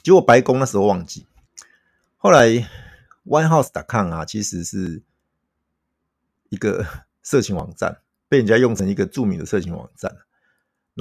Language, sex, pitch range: Chinese, male, 100-135 Hz